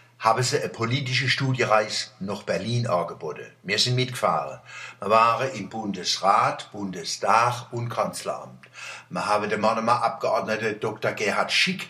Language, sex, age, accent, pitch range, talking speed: German, male, 60-79, German, 110-135 Hz, 130 wpm